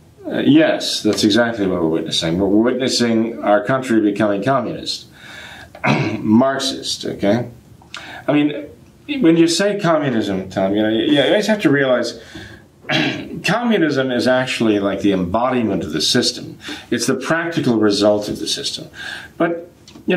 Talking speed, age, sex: 145 wpm, 50-69, male